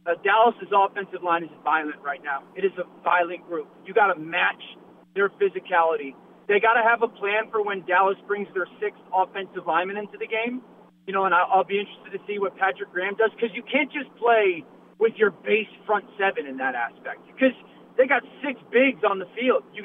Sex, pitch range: male, 190-230 Hz